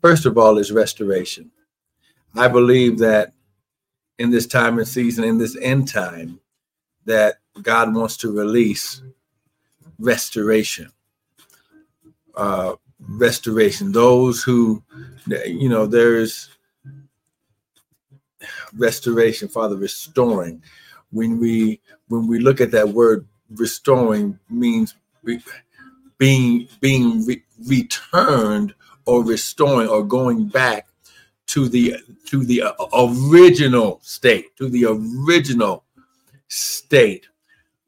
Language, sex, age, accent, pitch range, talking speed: English, male, 50-69, American, 115-135 Hz, 100 wpm